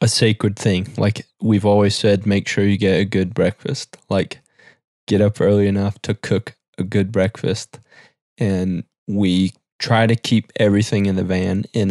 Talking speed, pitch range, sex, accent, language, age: 170 wpm, 95-110 Hz, male, American, English, 20-39